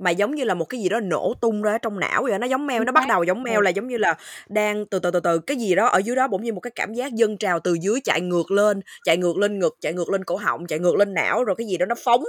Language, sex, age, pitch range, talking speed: Vietnamese, female, 20-39, 185-235 Hz, 335 wpm